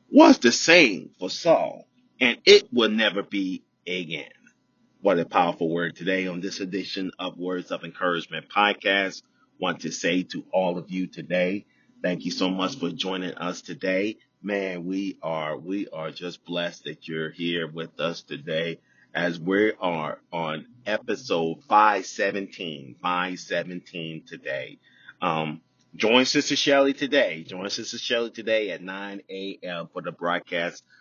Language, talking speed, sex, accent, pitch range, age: English, 145 wpm, male, American, 85-100 Hz, 30-49